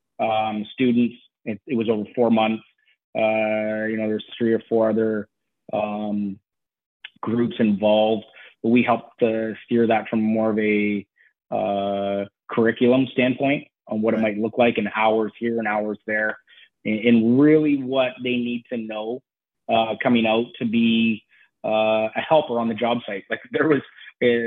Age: 30-49